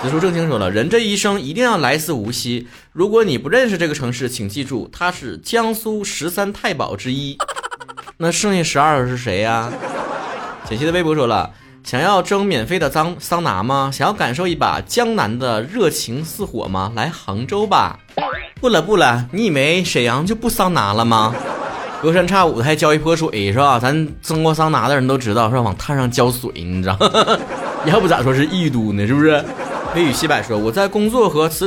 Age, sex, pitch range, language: 20-39, male, 120-185 Hz, Chinese